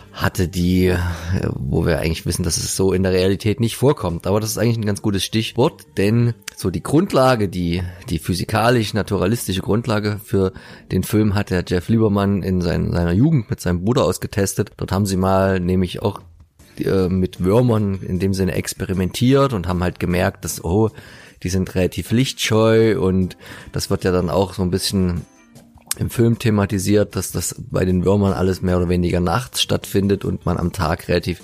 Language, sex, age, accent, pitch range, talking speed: German, male, 30-49, German, 90-110 Hz, 185 wpm